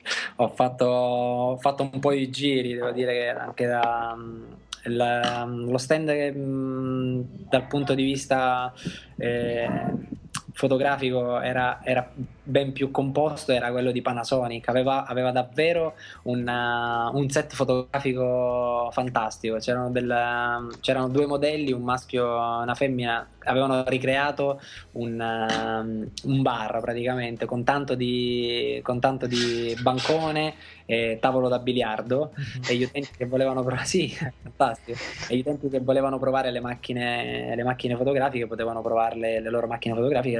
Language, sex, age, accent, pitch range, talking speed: Italian, male, 20-39, native, 115-135 Hz, 135 wpm